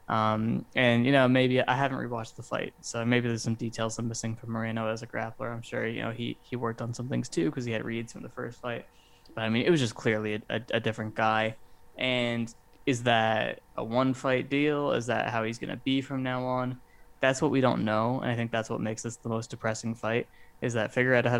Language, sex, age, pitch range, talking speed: English, male, 20-39, 110-125 Hz, 255 wpm